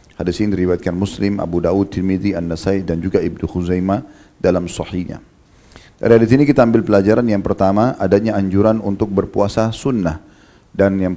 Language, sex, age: Indonesian, male, 40-59